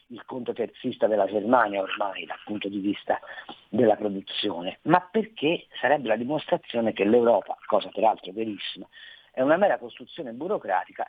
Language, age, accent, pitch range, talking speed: Italian, 50-69, native, 105-175 Hz, 145 wpm